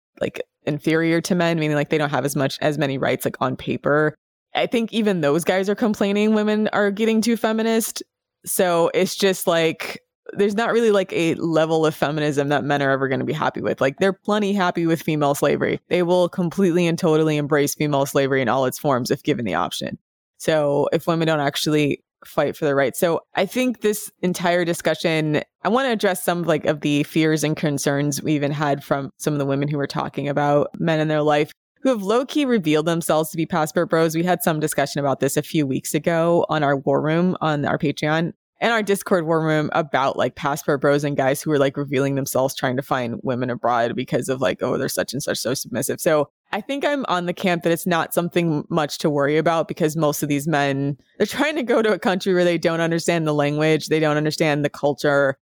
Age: 20-39